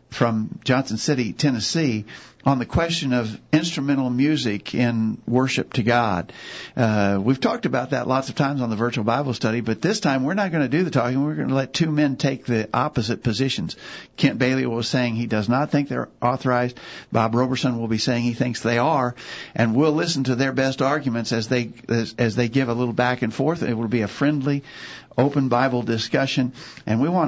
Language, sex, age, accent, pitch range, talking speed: English, male, 50-69, American, 115-140 Hz, 210 wpm